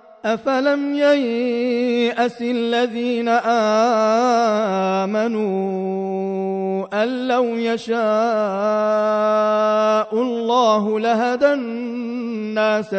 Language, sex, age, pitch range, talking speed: Arabic, male, 30-49, 195-235 Hz, 45 wpm